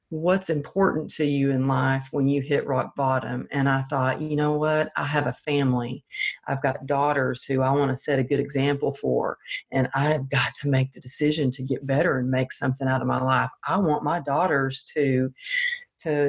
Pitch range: 140-170 Hz